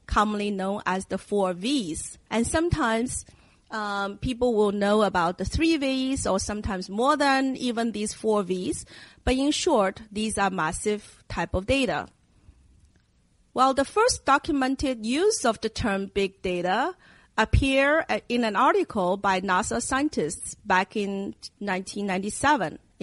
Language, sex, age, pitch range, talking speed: English, female, 40-59, 195-265 Hz, 140 wpm